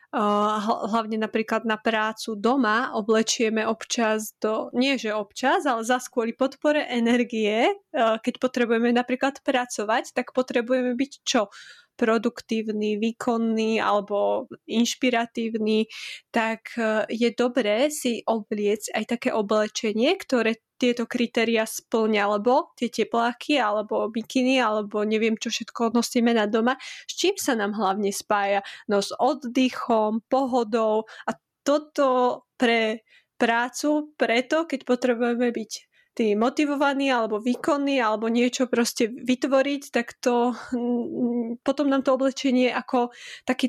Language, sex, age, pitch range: Slovak, female, 20-39, 225-260 Hz